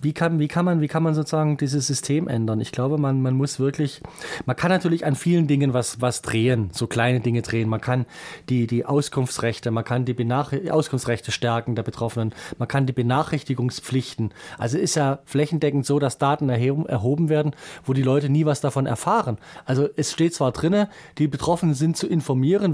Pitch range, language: 125-155 Hz, German